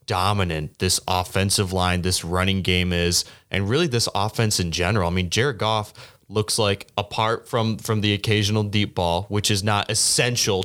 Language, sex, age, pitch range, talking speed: English, male, 20-39, 95-110 Hz, 175 wpm